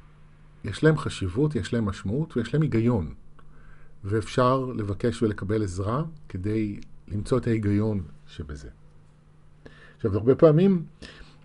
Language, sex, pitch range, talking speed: Hebrew, male, 95-115 Hz, 110 wpm